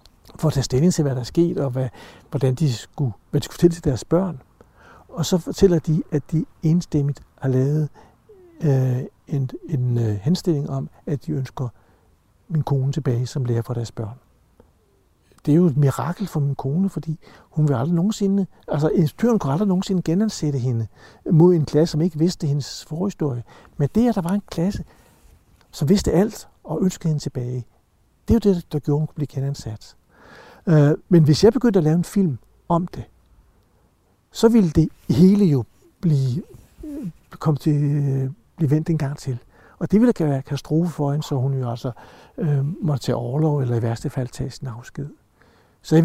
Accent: native